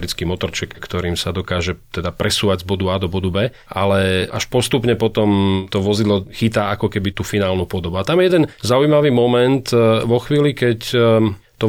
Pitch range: 100-120 Hz